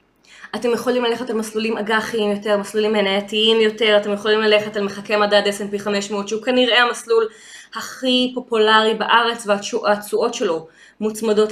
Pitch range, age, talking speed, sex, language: 210-260 Hz, 20-39, 140 wpm, female, Hebrew